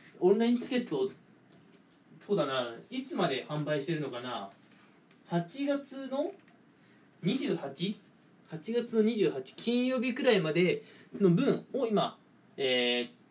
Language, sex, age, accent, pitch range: Japanese, male, 20-39, native, 160-230 Hz